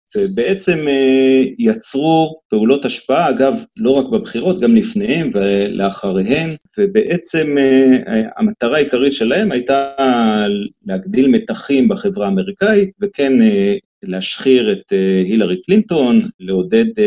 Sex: male